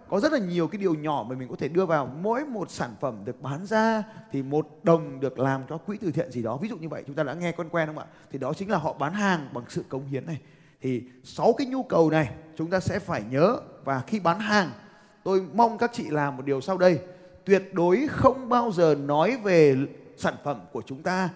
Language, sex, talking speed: Vietnamese, male, 255 wpm